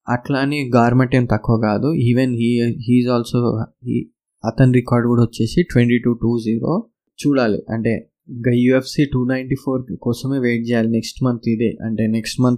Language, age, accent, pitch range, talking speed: Telugu, 20-39, native, 115-130 Hz, 160 wpm